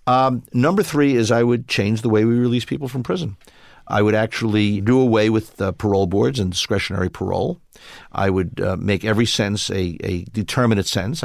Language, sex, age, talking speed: English, male, 50-69, 190 wpm